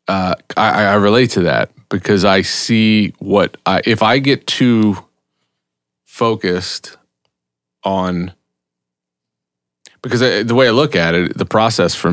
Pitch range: 90-110 Hz